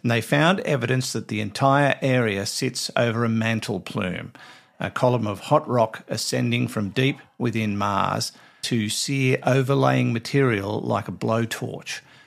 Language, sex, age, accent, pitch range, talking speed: English, male, 50-69, Australian, 105-130 Hz, 145 wpm